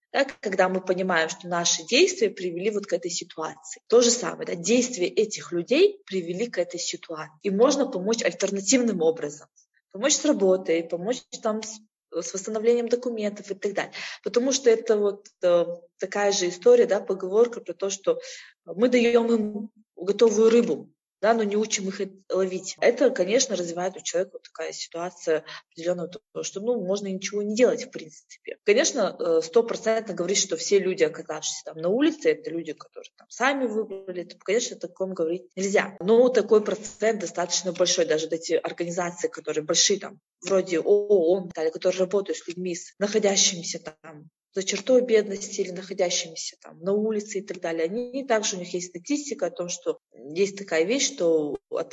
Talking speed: 170 wpm